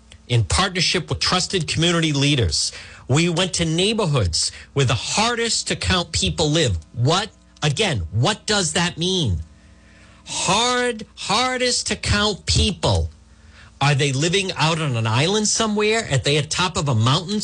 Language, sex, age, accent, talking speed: English, male, 50-69, American, 150 wpm